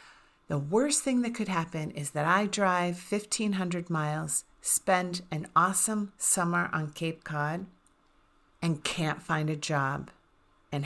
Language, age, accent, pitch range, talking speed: English, 40-59, American, 150-185 Hz, 145 wpm